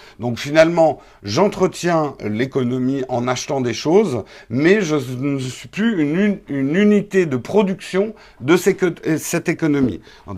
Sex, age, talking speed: male, 50-69, 125 wpm